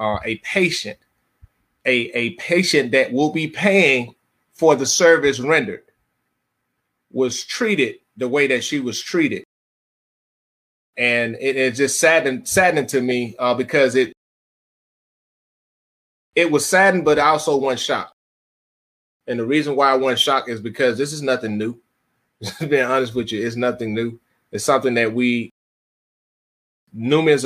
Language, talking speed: English, 145 wpm